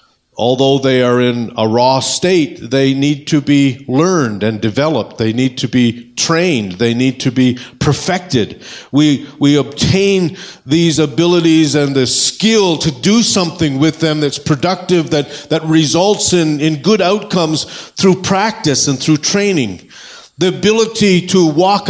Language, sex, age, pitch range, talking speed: English, male, 50-69, 135-185 Hz, 150 wpm